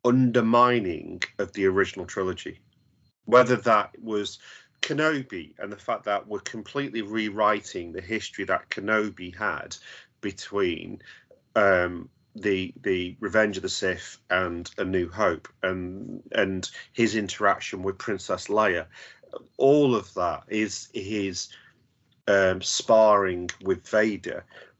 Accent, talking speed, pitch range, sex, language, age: British, 120 wpm, 95-115 Hz, male, English, 40-59